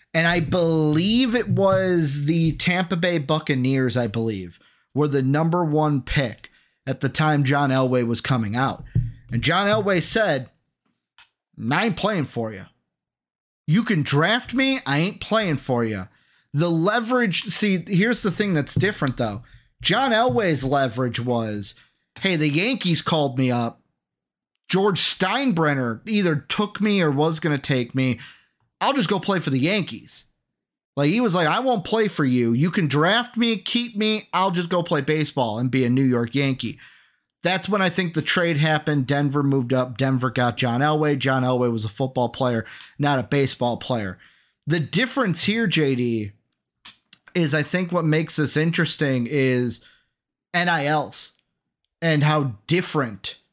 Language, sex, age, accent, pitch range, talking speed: English, male, 30-49, American, 130-180 Hz, 165 wpm